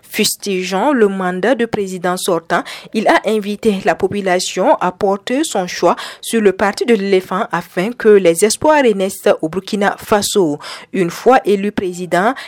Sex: female